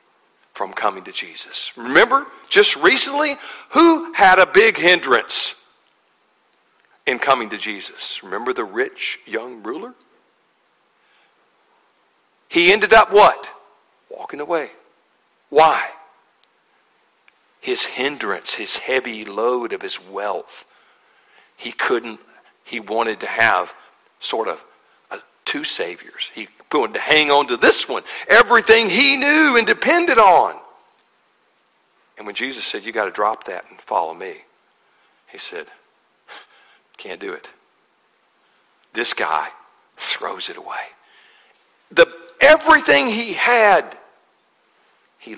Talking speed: 115 wpm